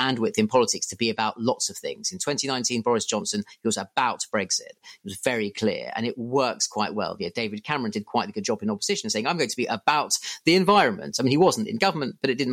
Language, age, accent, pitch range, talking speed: English, 30-49, British, 110-175 Hz, 250 wpm